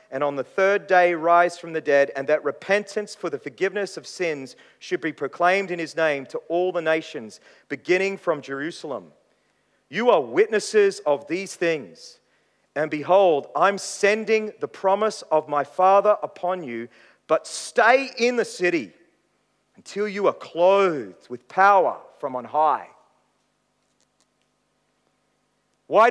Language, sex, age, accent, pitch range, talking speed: English, male, 40-59, Australian, 175-235 Hz, 140 wpm